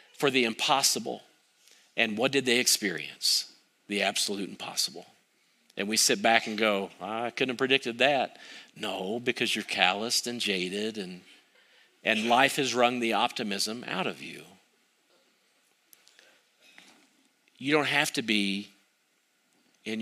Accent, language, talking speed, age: American, English, 130 wpm, 50-69